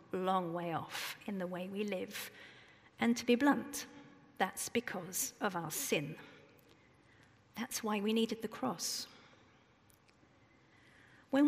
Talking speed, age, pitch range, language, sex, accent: 125 wpm, 40-59, 215-260 Hz, English, female, British